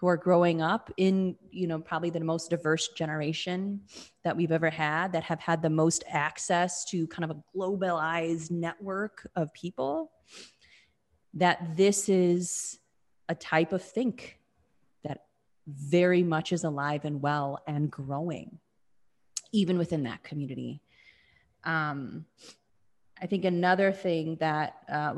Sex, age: female, 20-39